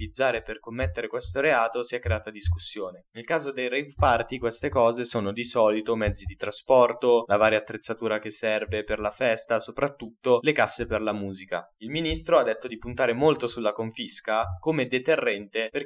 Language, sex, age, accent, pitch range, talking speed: Italian, male, 10-29, native, 110-140 Hz, 180 wpm